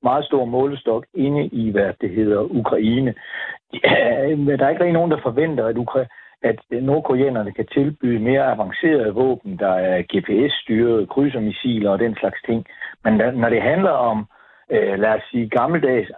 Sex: male